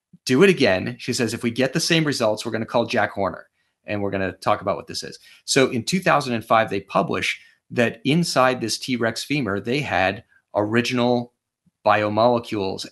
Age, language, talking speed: 30-49, English, 185 wpm